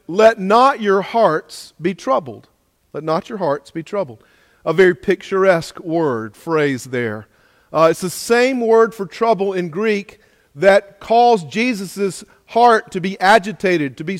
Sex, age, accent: male, 40-59, American